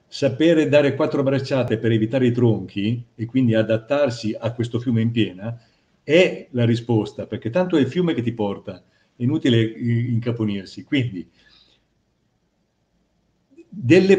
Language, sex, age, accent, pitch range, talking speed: Italian, male, 50-69, native, 110-135 Hz, 135 wpm